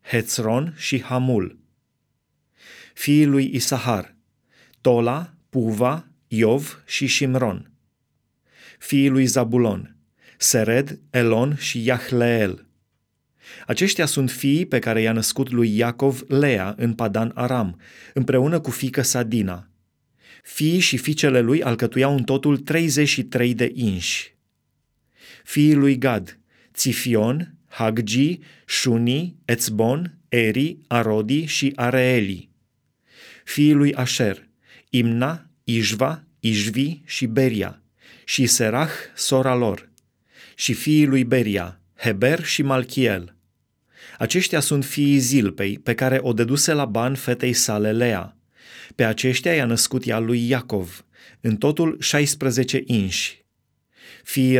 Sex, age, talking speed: male, 30-49, 110 wpm